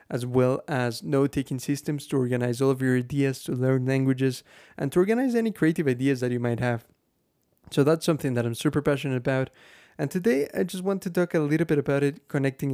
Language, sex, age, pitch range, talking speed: English, male, 20-39, 130-160 Hz, 215 wpm